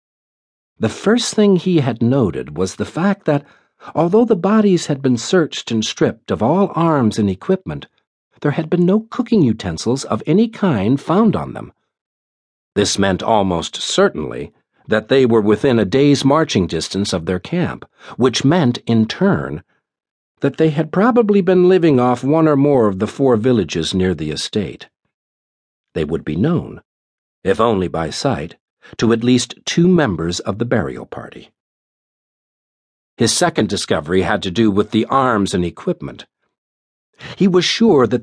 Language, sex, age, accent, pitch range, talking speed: English, male, 60-79, American, 100-160 Hz, 160 wpm